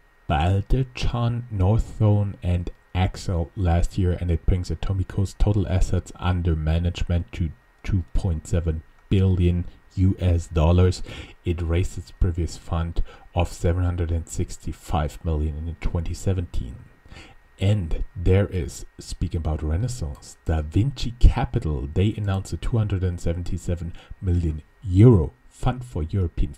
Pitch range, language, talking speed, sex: 85-100 Hz, English, 105 wpm, male